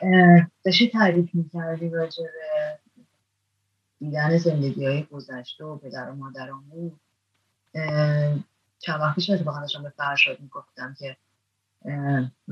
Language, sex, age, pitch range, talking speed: Persian, female, 30-49, 140-200 Hz, 120 wpm